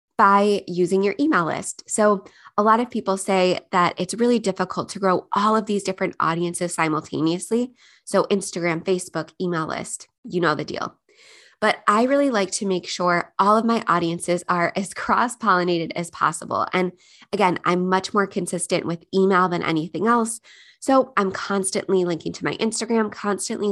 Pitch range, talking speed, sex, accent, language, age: 180-215 Hz, 170 wpm, female, American, English, 20-39